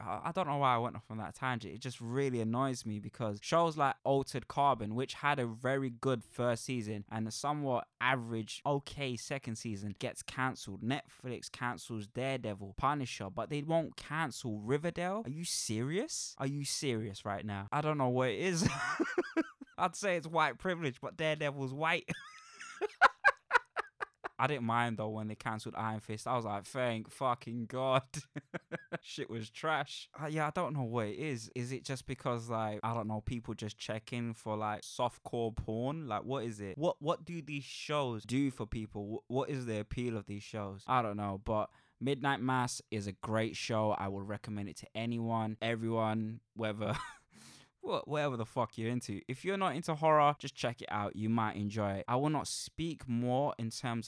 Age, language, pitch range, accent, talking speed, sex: 20-39, English, 110-140 Hz, British, 190 wpm, male